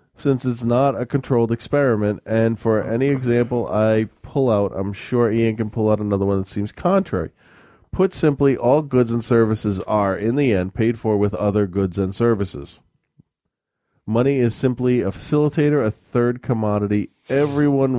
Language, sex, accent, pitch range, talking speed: English, male, American, 100-120 Hz, 165 wpm